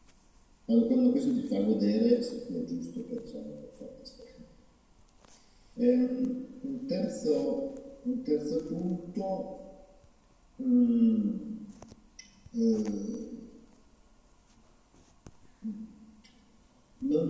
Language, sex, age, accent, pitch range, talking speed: Italian, male, 50-69, native, 230-250 Hz, 70 wpm